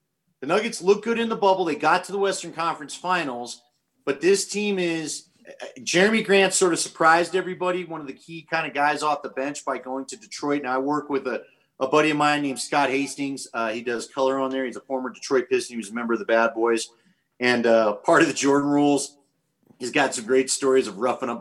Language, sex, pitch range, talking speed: English, male, 120-155 Hz, 235 wpm